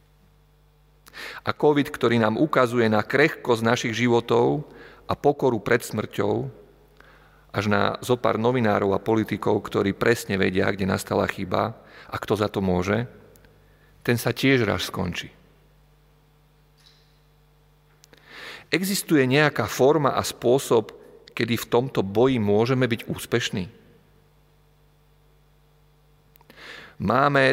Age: 40-59